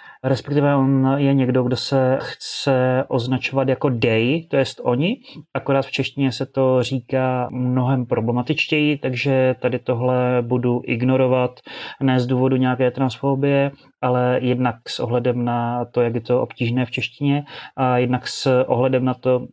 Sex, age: male, 30-49